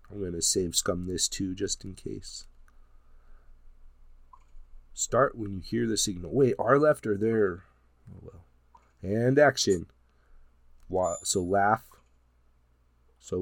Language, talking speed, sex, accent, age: English, 130 wpm, male, American, 30-49